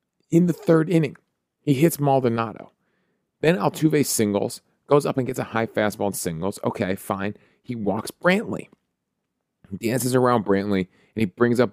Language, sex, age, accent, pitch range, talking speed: English, male, 40-59, American, 105-145 Hz, 160 wpm